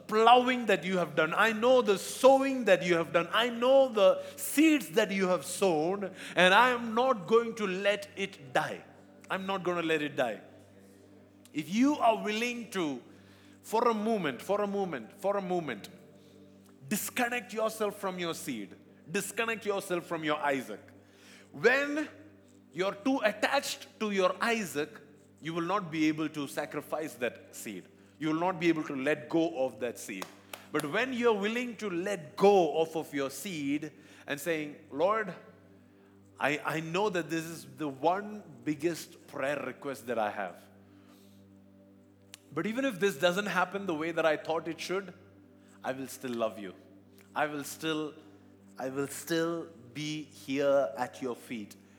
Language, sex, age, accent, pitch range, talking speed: English, male, 50-69, Indian, 130-200 Hz, 170 wpm